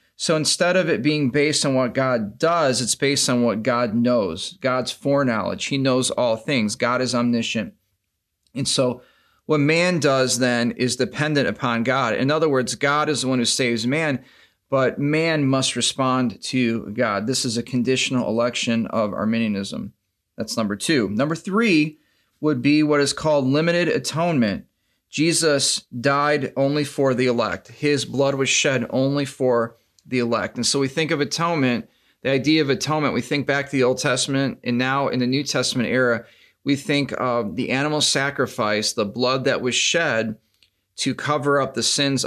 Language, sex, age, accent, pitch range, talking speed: English, male, 30-49, American, 120-140 Hz, 175 wpm